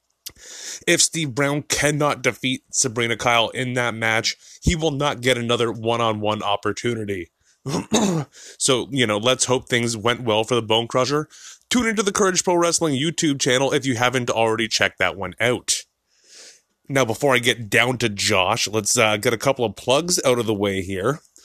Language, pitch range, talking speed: English, 110-135 Hz, 180 wpm